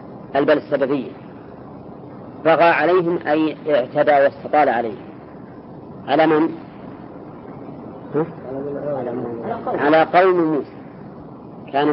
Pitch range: 140-155 Hz